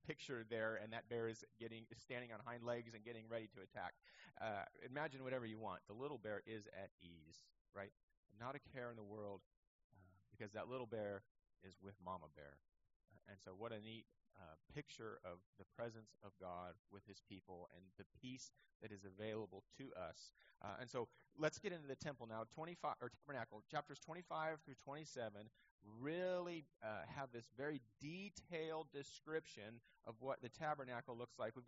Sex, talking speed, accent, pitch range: male, 180 wpm, American, 110-145 Hz